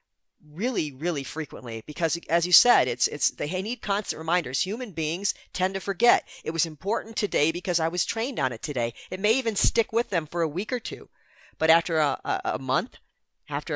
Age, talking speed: 40-59, 205 wpm